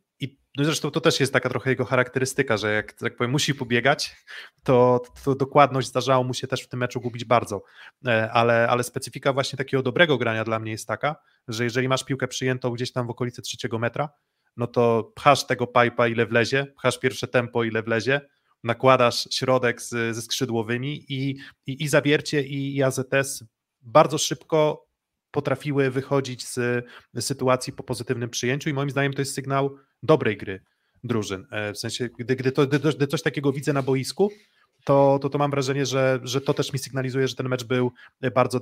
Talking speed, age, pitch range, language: 180 wpm, 20-39, 120-140 Hz, Polish